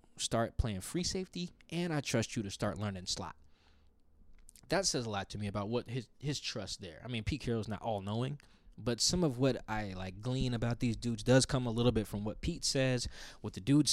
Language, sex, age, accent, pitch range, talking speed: English, male, 20-39, American, 100-130 Hz, 225 wpm